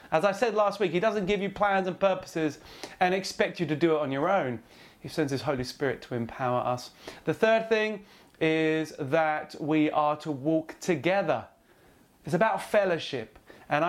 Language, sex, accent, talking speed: English, male, British, 185 wpm